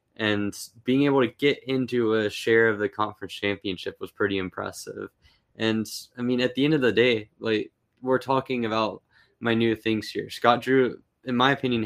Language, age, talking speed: English, 10-29, 185 wpm